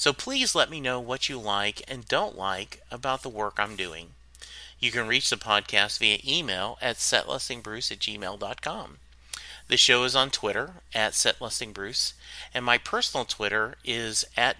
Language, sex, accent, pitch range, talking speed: English, male, American, 105-140 Hz, 165 wpm